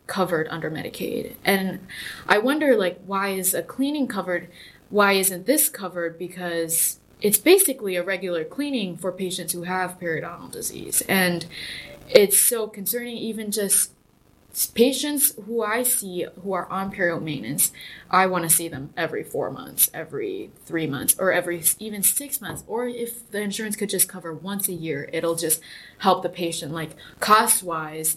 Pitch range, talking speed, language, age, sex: 160-195 Hz, 160 wpm, English, 20-39, female